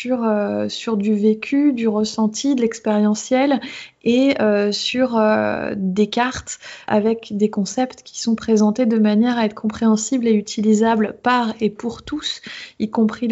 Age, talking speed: 20-39, 150 wpm